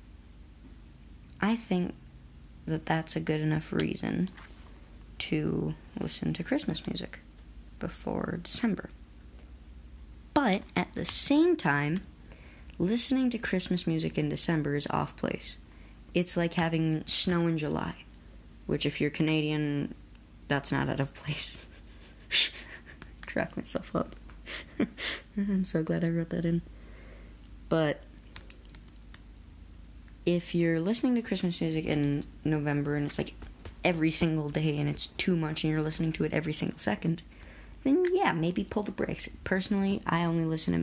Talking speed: 135 wpm